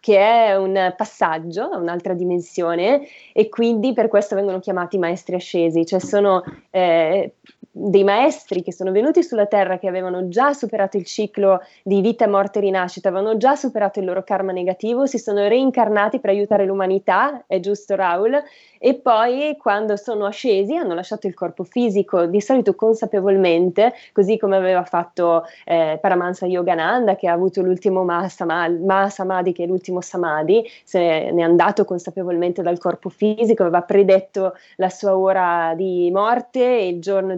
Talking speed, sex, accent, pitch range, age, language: 160 wpm, female, native, 180-220 Hz, 20-39, Italian